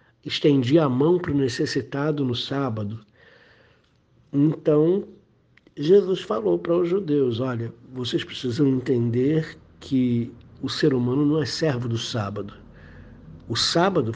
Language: Portuguese